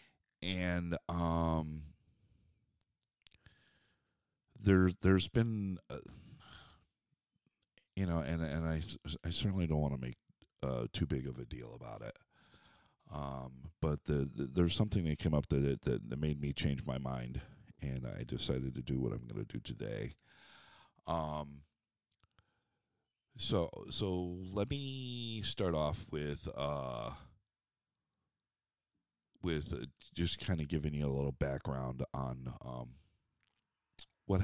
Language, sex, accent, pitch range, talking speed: English, male, American, 70-95 Hz, 130 wpm